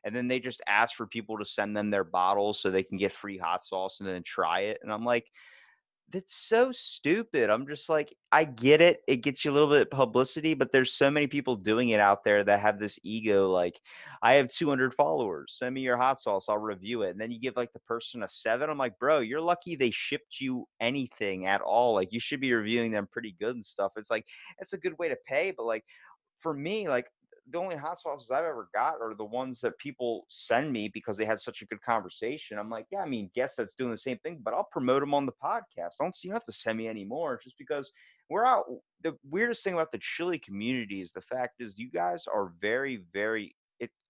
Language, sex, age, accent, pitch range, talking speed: English, male, 30-49, American, 105-145 Hz, 250 wpm